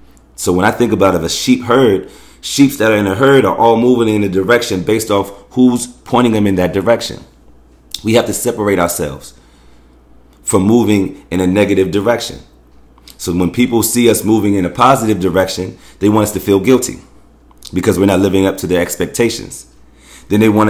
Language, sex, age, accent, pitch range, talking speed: English, male, 30-49, American, 85-120 Hz, 195 wpm